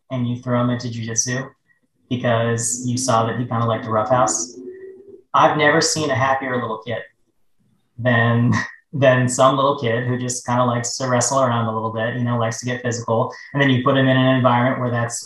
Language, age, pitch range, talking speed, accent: English, 20-39, 115-135 Hz, 220 wpm, American